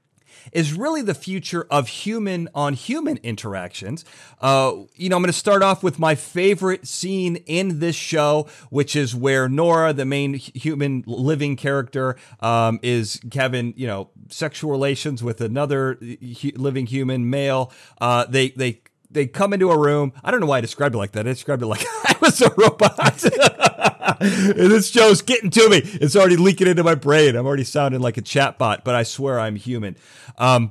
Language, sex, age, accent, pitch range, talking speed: English, male, 40-59, American, 125-170 Hz, 175 wpm